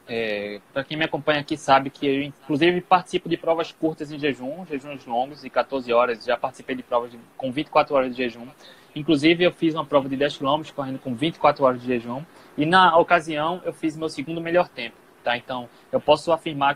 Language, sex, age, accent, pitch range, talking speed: Portuguese, male, 20-39, Brazilian, 140-175 Hz, 210 wpm